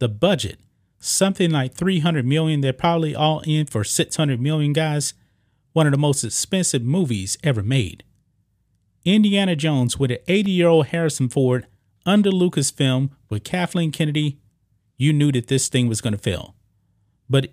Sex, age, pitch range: male, 30-49, 110-150 Hz